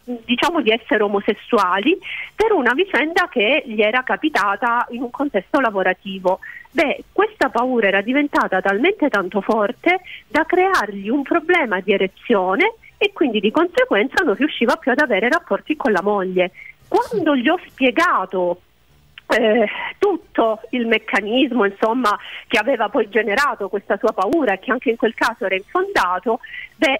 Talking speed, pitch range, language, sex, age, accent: 145 wpm, 210-340 Hz, Italian, female, 40-59, native